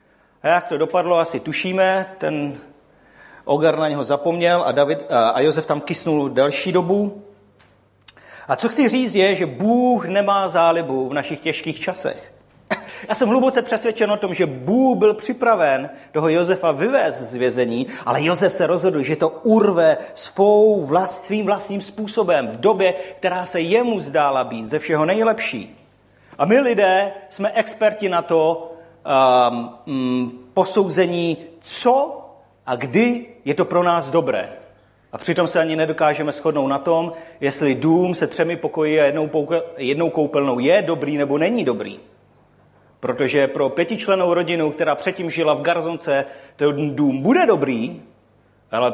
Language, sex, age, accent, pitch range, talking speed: Czech, male, 40-59, native, 150-205 Hz, 150 wpm